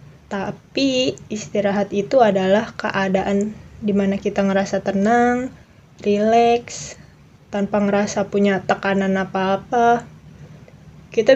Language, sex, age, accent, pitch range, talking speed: Indonesian, female, 20-39, native, 195-220 Hz, 85 wpm